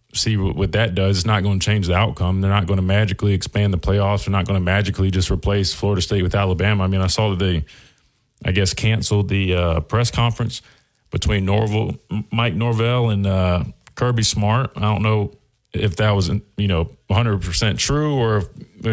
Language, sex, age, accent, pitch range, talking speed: English, male, 30-49, American, 100-125 Hz, 200 wpm